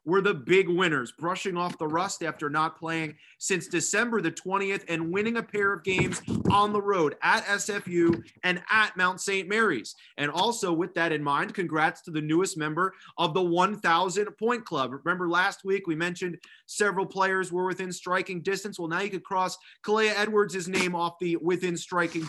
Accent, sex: American, male